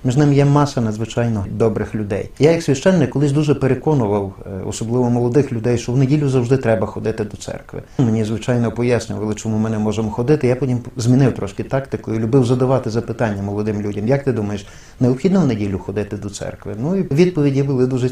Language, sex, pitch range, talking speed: Ukrainian, male, 105-145 Hz, 190 wpm